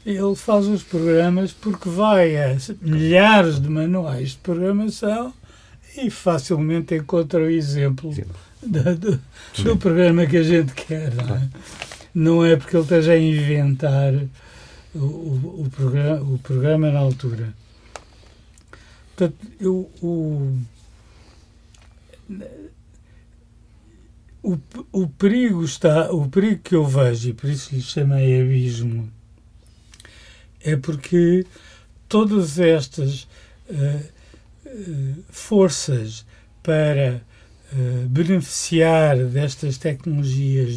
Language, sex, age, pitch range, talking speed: Portuguese, male, 60-79, 125-165 Hz, 90 wpm